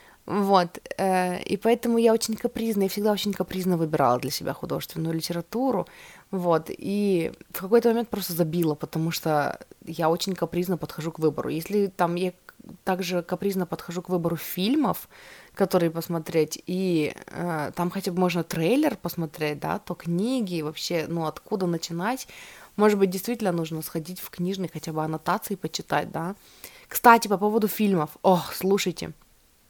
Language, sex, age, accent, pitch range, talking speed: Russian, female, 20-39, native, 165-200 Hz, 150 wpm